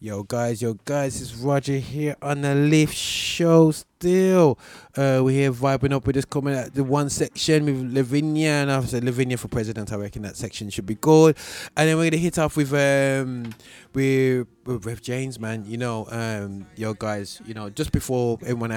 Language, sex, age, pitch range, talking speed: English, male, 20-39, 110-145 Hz, 195 wpm